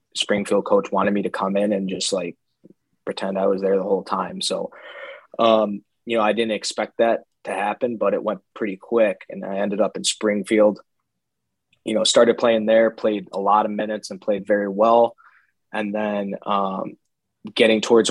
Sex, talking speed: male, 190 wpm